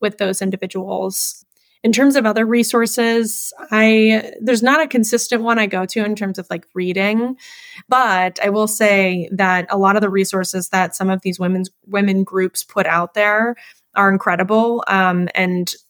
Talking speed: 175 wpm